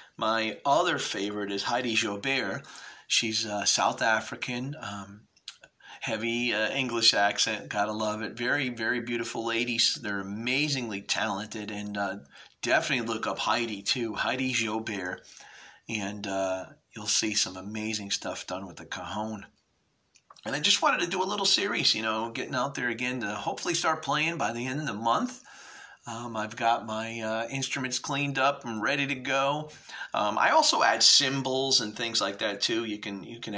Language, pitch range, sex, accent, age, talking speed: English, 100-120 Hz, male, American, 40-59, 175 wpm